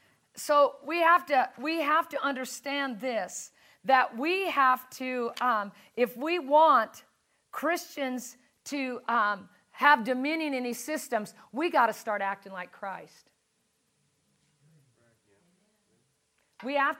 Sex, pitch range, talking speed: female, 215-280 Hz, 120 wpm